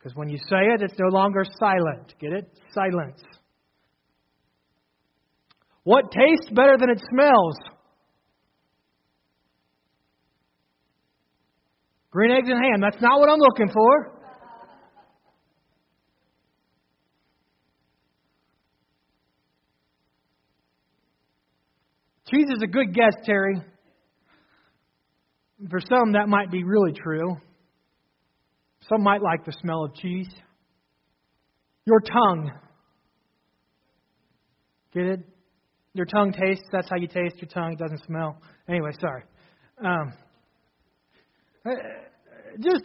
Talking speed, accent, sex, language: 95 wpm, American, male, English